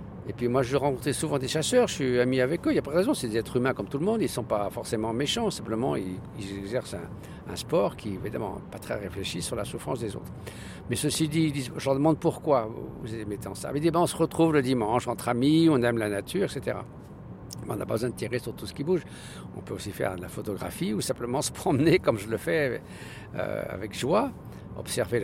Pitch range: 95-135 Hz